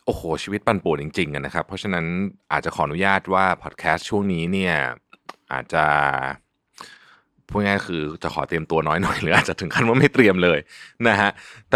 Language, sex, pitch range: Thai, male, 85-130 Hz